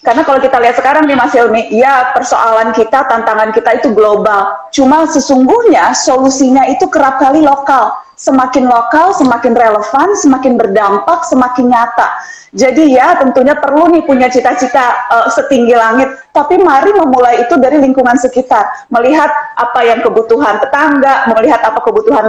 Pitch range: 230-275 Hz